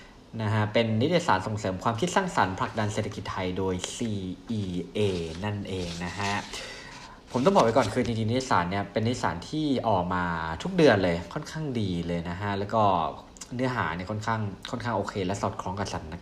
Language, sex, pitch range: Thai, male, 95-120 Hz